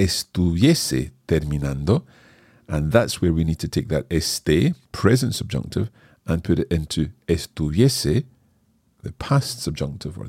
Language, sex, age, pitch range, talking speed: English, male, 40-59, 80-110 Hz, 130 wpm